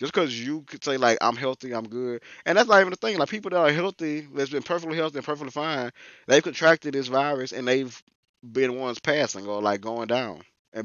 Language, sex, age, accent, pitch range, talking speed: English, male, 20-39, American, 110-145 Hz, 230 wpm